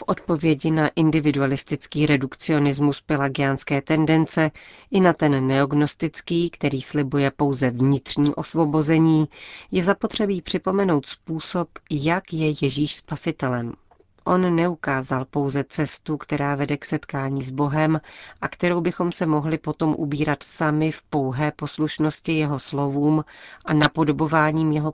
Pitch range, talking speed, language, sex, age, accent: 140-160 Hz, 120 wpm, Czech, female, 40-59, native